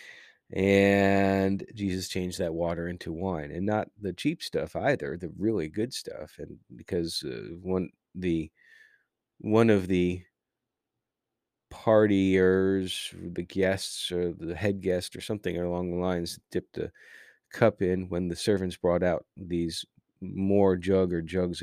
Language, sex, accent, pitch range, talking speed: English, male, American, 90-100 Hz, 140 wpm